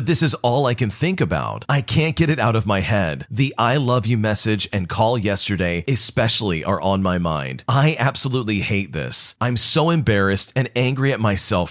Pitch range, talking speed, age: 105-140 Hz, 200 wpm, 40-59